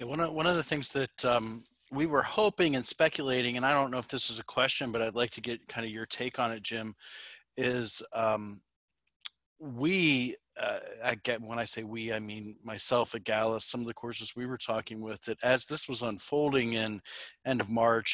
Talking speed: 220 wpm